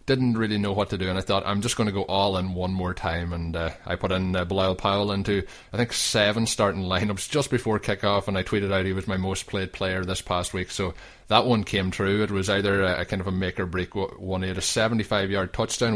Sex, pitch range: male, 90-105 Hz